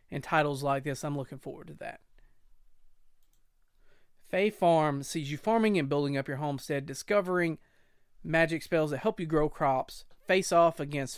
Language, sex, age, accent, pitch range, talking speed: English, male, 30-49, American, 145-175 Hz, 160 wpm